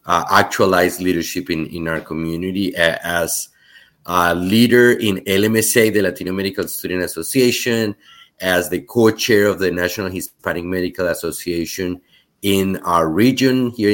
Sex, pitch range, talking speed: male, 85-105 Hz, 135 wpm